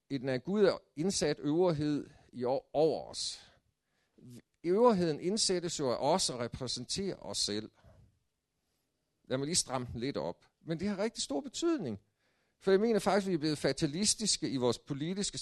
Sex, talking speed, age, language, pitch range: male, 165 wpm, 50-69, Danish, 115-170 Hz